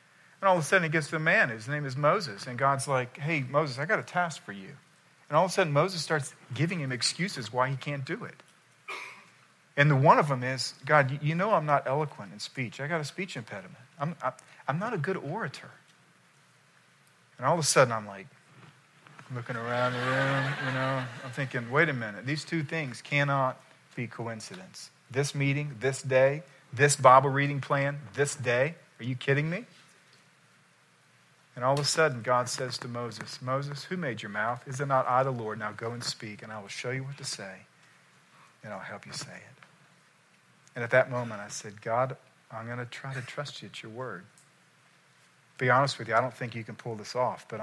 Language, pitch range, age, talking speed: English, 125-155 Hz, 40-59, 215 wpm